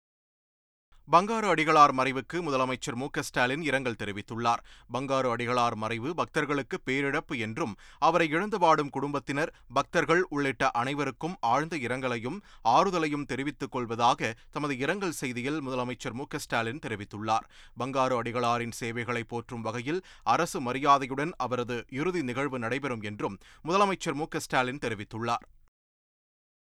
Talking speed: 110 wpm